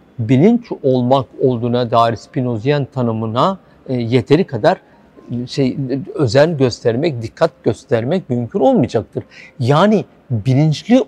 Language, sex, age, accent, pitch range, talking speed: Turkish, male, 50-69, native, 115-150 Hz, 95 wpm